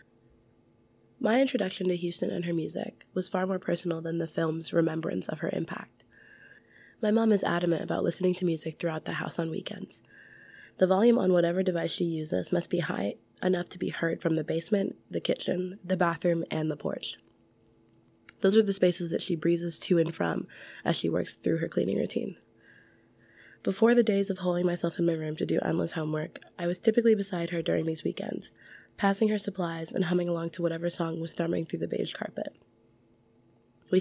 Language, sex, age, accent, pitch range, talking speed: English, female, 20-39, American, 165-185 Hz, 190 wpm